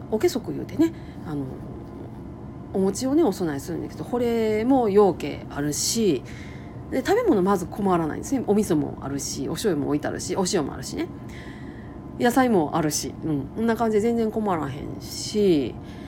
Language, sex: Japanese, female